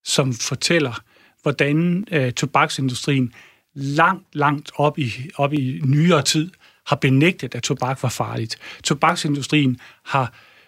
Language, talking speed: Danish, 105 wpm